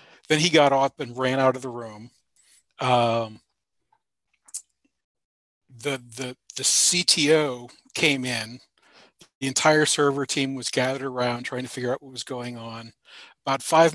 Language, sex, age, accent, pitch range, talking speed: English, male, 40-59, American, 125-150 Hz, 145 wpm